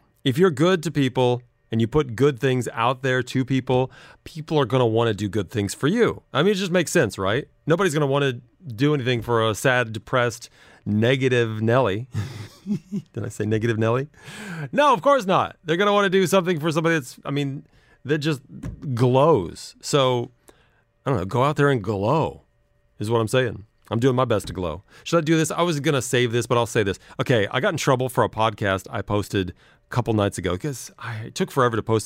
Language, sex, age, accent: English, male, 30-49, American